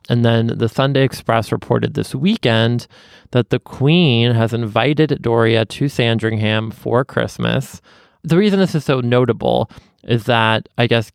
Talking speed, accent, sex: 150 wpm, American, male